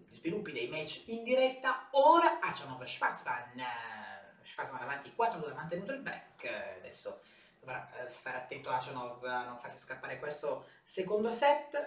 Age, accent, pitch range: 30-49, native, 195-285 Hz